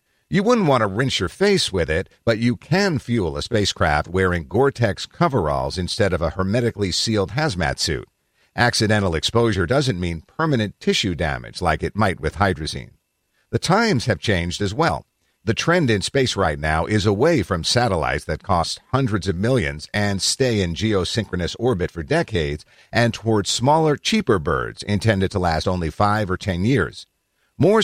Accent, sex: American, male